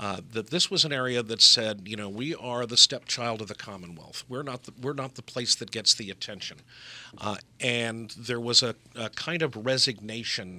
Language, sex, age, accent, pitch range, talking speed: English, male, 50-69, American, 105-130 Hz, 200 wpm